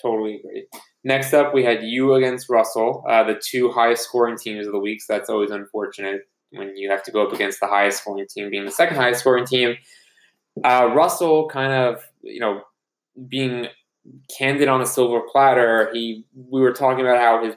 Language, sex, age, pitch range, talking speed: English, male, 20-39, 105-125 Hz, 200 wpm